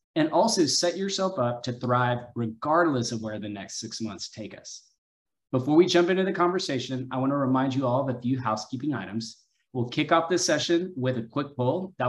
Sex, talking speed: male, 210 wpm